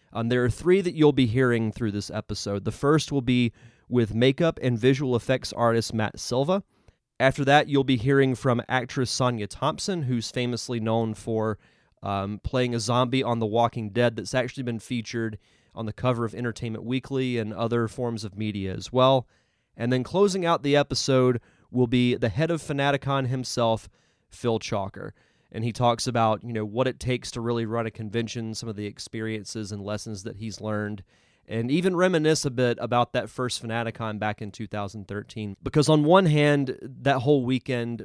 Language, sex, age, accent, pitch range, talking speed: English, male, 30-49, American, 110-135 Hz, 185 wpm